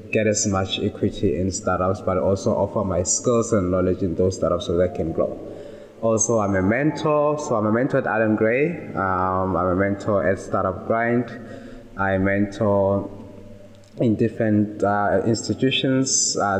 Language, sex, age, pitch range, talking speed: English, male, 20-39, 100-120 Hz, 165 wpm